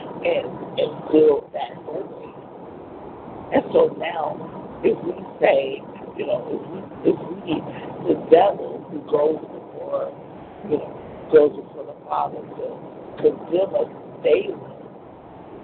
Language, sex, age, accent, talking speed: English, male, 50-69, American, 115 wpm